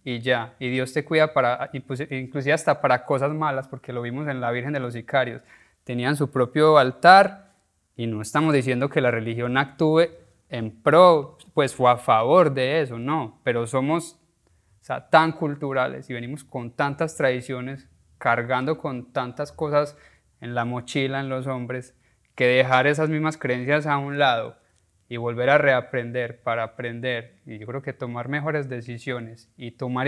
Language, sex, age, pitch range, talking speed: Spanish, male, 20-39, 120-145 Hz, 170 wpm